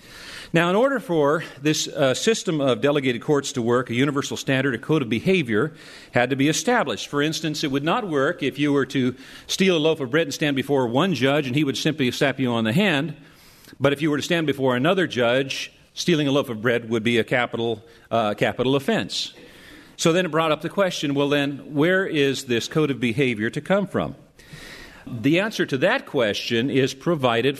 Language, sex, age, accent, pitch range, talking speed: English, male, 50-69, American, 130-160 Hz, 215 wpm